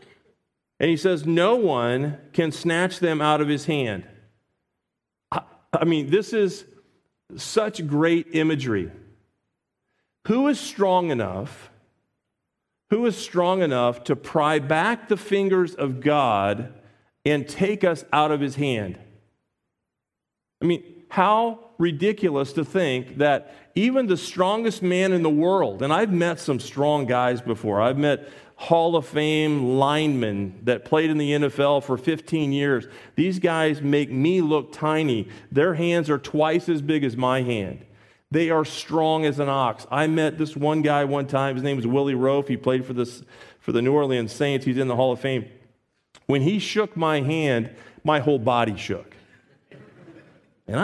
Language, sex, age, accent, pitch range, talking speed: English, male, 40-59, American, 130-170 Hz, 155 wpm